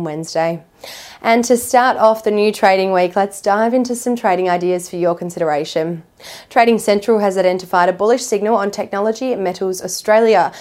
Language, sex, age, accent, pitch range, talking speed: English, female, 20-39, Australian, 180-225 Hz, 165 wpm